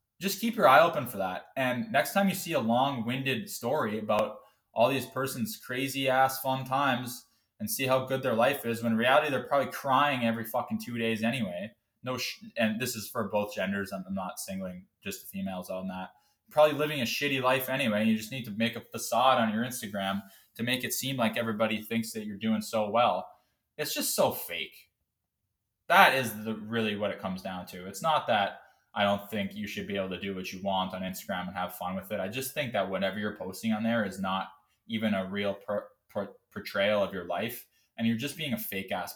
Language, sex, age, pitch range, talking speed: English, male, 20-39, 95-130 Hz, 220 wpm